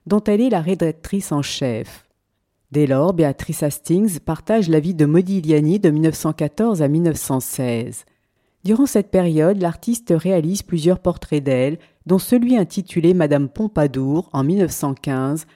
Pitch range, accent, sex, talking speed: 150-200 Hz, French, female, 135 wpm